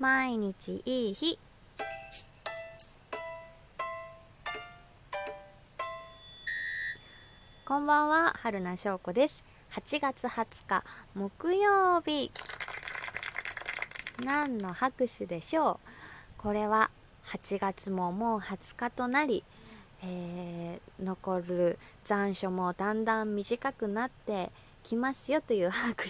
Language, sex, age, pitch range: Japanese, female, 20-39, 180-280 Hz